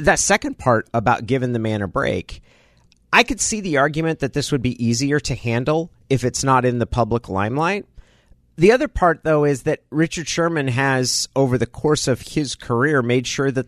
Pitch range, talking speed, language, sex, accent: 120-155 Hz, 200 wpm, English, male, American